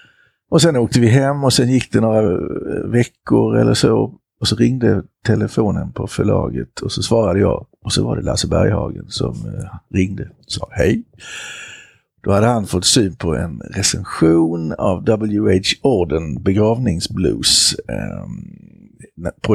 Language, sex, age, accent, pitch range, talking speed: Swedish, male, 60-79, native, 95-120 Hz, 145 wpm